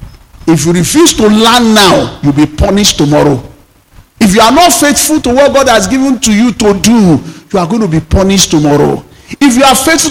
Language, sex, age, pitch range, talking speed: English, male, 50-69, 140-215 Hz, 210 wpm